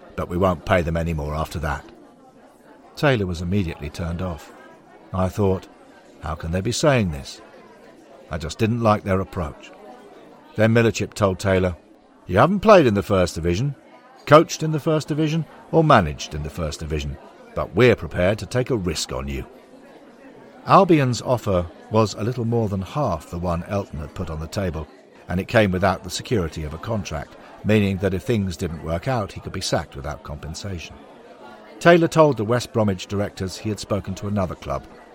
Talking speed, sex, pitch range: 185 wpm, male, 85-115 Hz